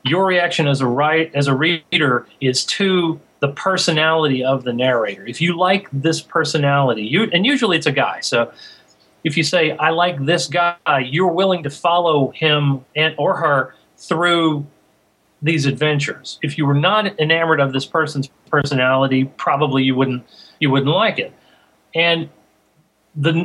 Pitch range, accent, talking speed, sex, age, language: 135-175 Hz, American, 160 wpm, male, 40-59, English